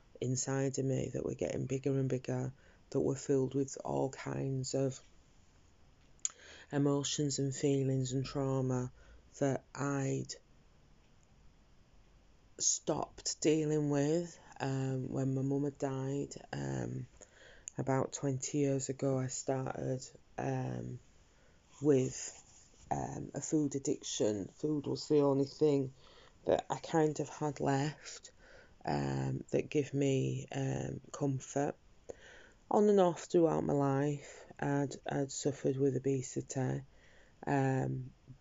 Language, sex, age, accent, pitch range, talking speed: English, female, 20-39, British, 130-145 Hz, 115 wpm